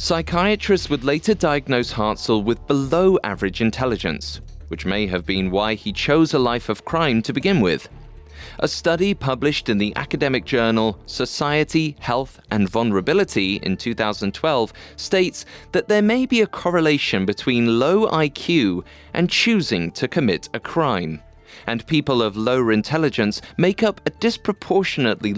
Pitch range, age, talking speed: 105-165 Hz, 30-49, 140 wpm